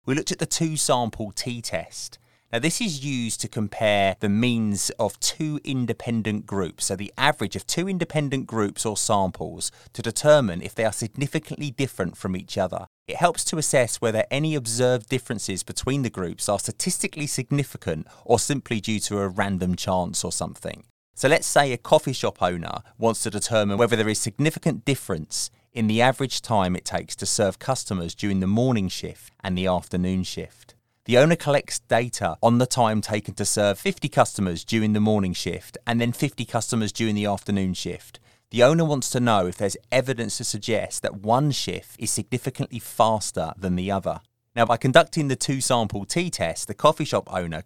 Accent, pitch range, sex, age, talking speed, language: British, 105-135 Hz, male, 30-49, 185 wpm, English